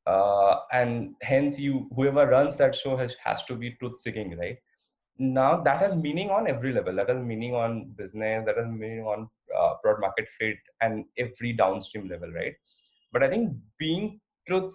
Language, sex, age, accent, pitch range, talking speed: English, male, 20-39, Indian, 120-165 Hz, 185 wpm